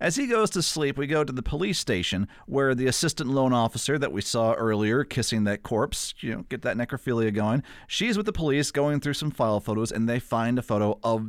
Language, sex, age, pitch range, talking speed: English, male, 40-59, 105-140 Hz, 235 wpm